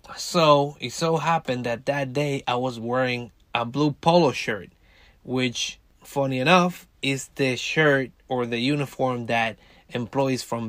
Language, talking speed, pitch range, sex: English, 145 wpm, 120-155 Hz, male